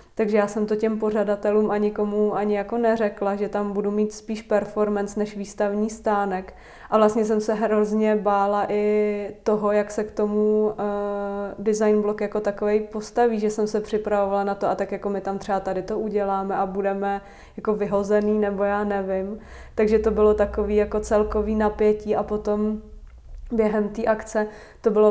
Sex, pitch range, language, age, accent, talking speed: female, 205-215 Hz, Czech, 20-39, native, 175 wpm